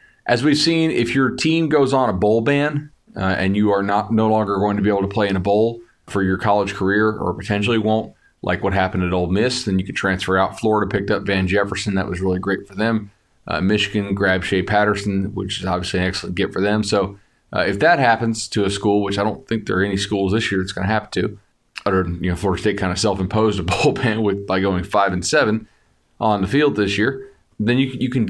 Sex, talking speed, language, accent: male, 250 wpm, English, American